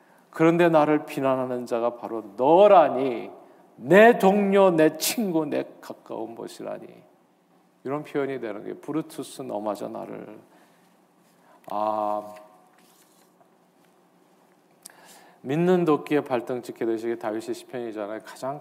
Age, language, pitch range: 40-59, Korean, 115-155 Hz